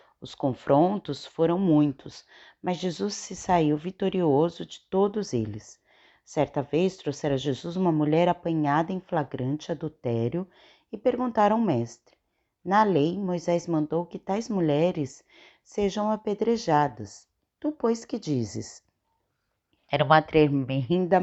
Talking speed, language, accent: 120 wpm, Portuguese, Brazilian